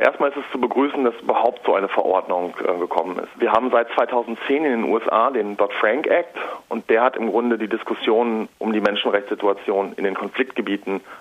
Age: 40-59